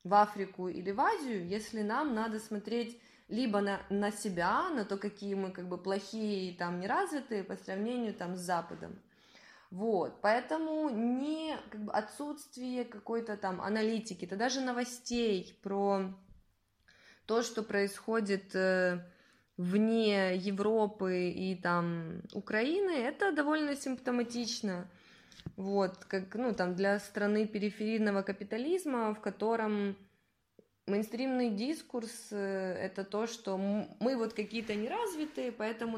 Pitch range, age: 195-235 Hz, 20-39